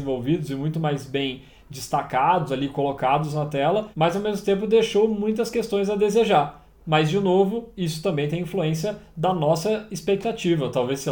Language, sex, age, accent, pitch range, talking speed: Portuguese, male, 20-39, Brazilian, 140-180 Hz, 165 wpm